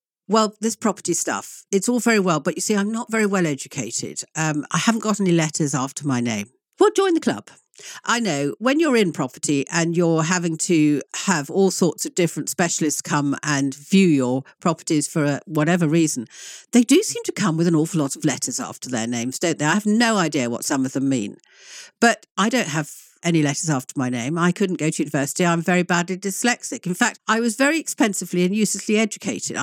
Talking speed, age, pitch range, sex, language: 215 wpm, 50-69, 155-215 Hz, female, English